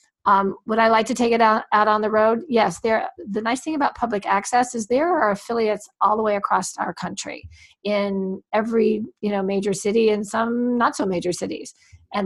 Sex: female